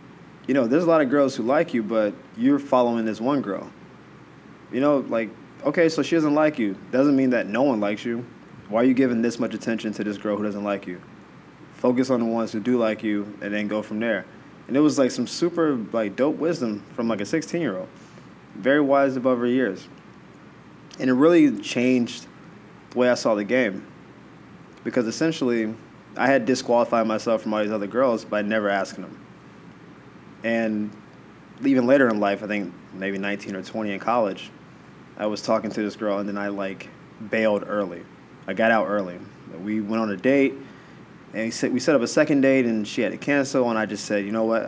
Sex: male